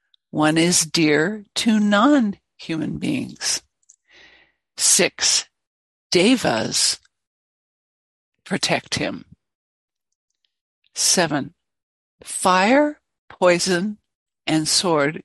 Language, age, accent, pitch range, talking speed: English, 60-79, American, 155-200 Hz, 60 wpm